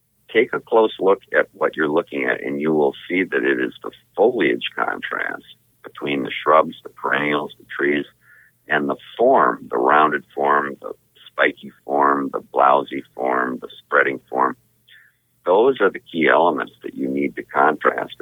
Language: English